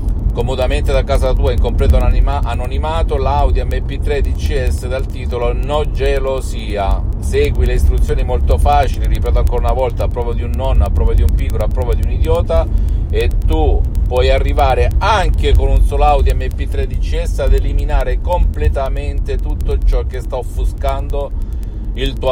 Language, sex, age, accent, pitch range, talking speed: Italian, male, 50-69, native, 75-105 Hz, 160 wpm